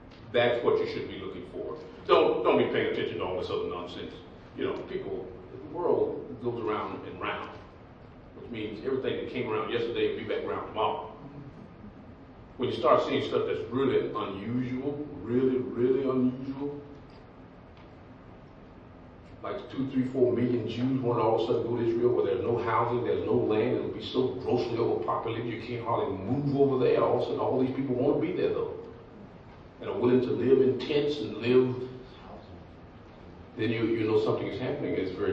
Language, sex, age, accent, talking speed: English, male, 40-59, American, 190 wpm